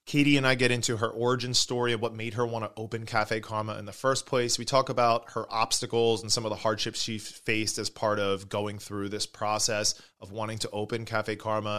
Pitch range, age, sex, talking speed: 105-120 Hz, 20-39, male, 235 wpm